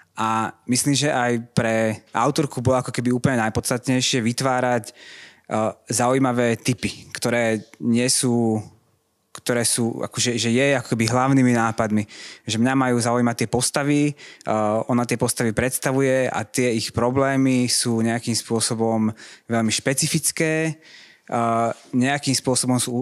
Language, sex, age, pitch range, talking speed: Slovak, male, 20-39, 115-130 Hz, 135 wpm